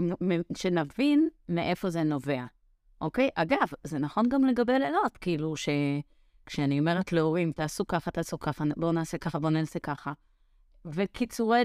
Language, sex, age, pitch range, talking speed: Hebrew, female, 30-49, 155-195 Hz, 135 wpm